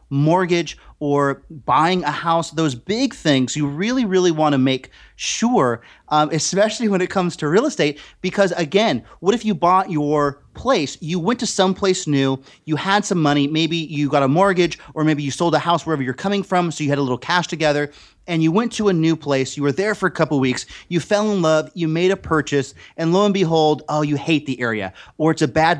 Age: 30-49